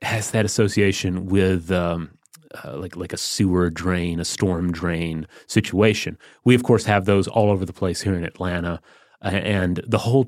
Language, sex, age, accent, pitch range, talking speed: English, male, 30-49, American, 90-115 Hz, 180 wpm